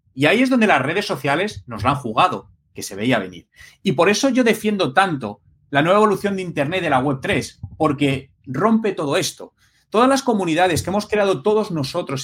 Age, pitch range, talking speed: 30-49, 130-205 Hz, 200 wpm